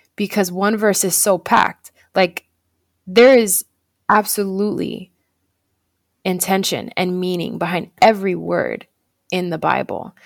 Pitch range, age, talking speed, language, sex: 170-210 Hz, 20-39, 110 wpm, English, female